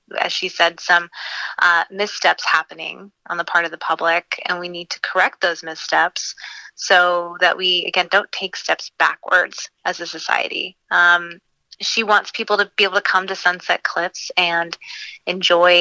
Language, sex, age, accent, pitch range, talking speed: English, female, 20-39, American, 175-190 Hz, 170 wpm